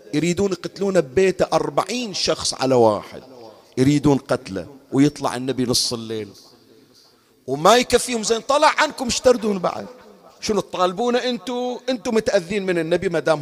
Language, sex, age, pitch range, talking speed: Arabic, male, 50-69, 135-210 Hz, 130 wpm